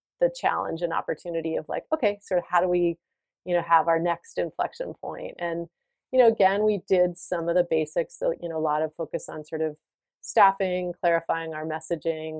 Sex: female